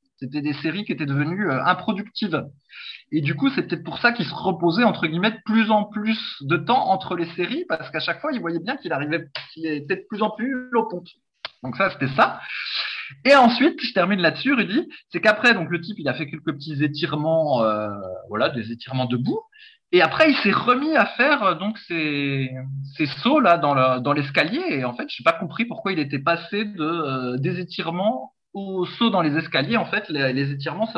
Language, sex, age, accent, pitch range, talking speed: French, male, 20-39, French, 140-205 Hz, 215 wpm